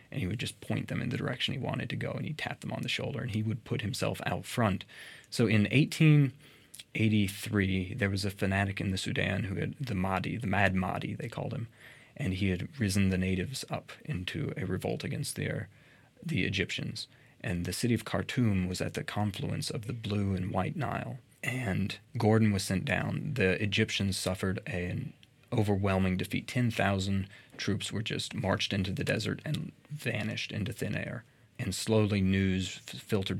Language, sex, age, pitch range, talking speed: English, male, 30-49, 95-130 Hz, 185 wpm